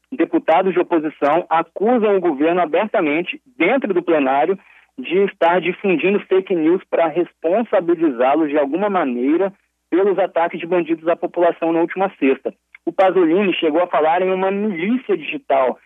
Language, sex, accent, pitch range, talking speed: Portuguese, male, Brazilian, 165-225 Hz, 145 wpm